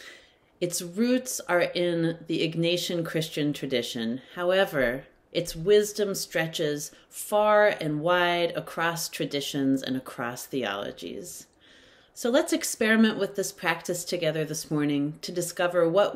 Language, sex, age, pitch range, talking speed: English, female, 30-49, 150-190 Hz, 120 wpm